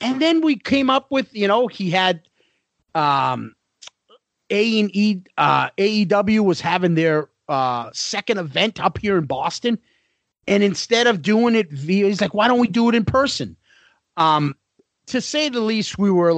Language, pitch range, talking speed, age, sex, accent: English, 160-230 Hz, 165 wpm, 40-59, male, American